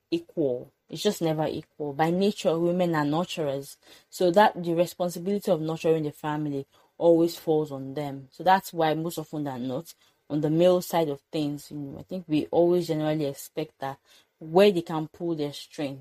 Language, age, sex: English, 20-39, female